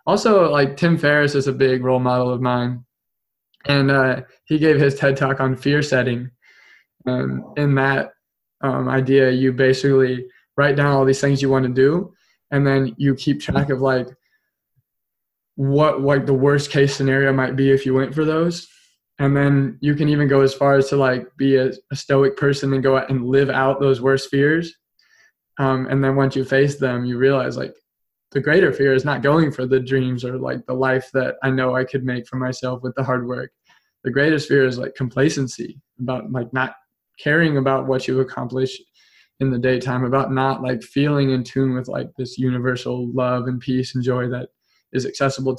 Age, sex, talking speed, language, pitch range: 20-39, male, 200 wpm, English, 125-140 Hz